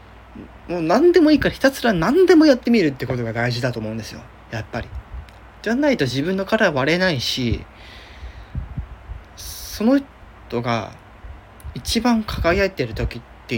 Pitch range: 105-155 Hz